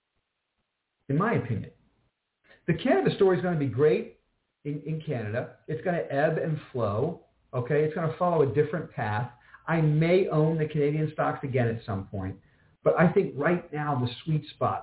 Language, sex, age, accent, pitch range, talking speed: English, male, 50-69, American, 125-165 Hz, 185 wpm